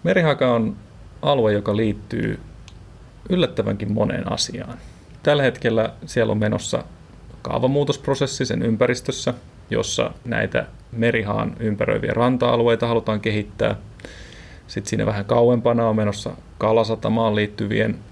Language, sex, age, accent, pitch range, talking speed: Finnish, male, 30-49, native, 105-130 Hz, 105 wpm